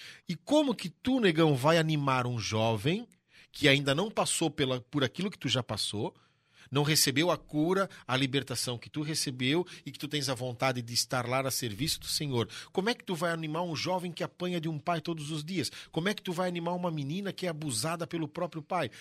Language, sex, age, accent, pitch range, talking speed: Portuguese, male, 40-59, Brazilian, 120-170 Hz, 225 wpm